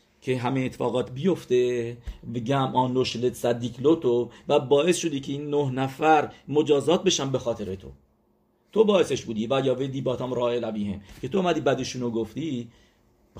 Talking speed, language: 160 wpm, English